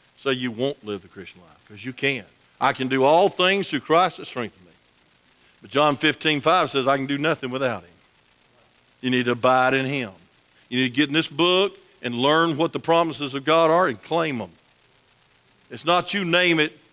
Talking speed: 215 wpm